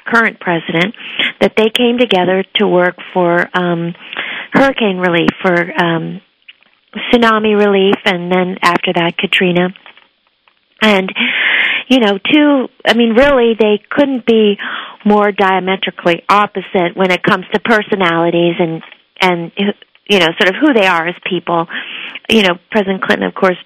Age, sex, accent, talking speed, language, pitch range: 40-59, female, American, 140 wpm, English, 175-220 Hz